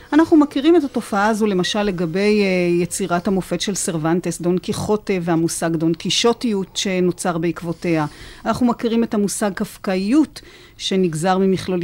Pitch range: 175-225 Hz